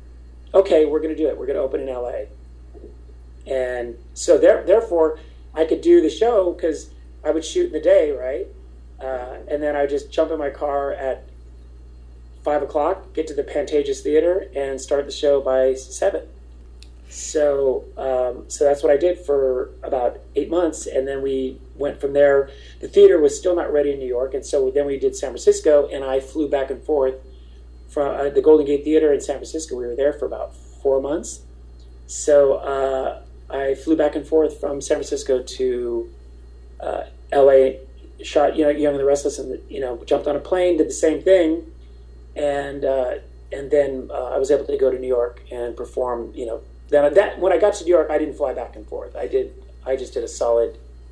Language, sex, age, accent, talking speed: English, male, 30-49, American, 205 wpm